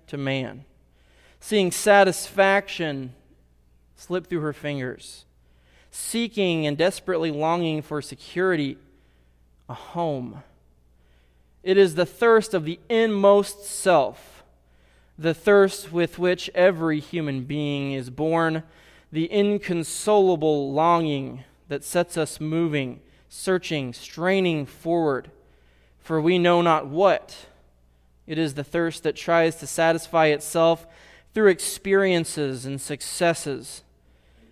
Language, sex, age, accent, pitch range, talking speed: English, male, 20-39, American, 130-175 Hz, 105 wpm